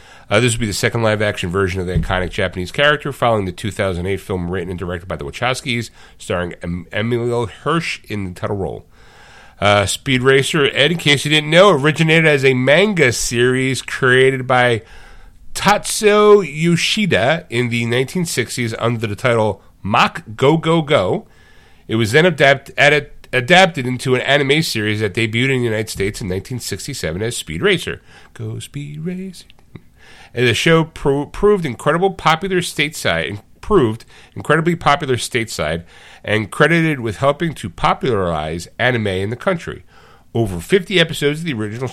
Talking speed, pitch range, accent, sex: 155 wpm, 100-145 Hz, American, male